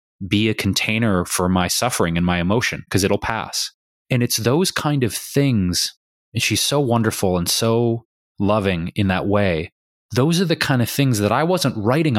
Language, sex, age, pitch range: English, male, 20-39, 95-120 Hz